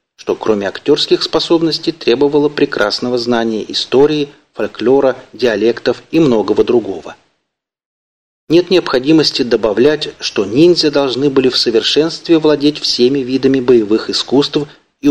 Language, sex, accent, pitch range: Russian, male, native, 125-160 Hz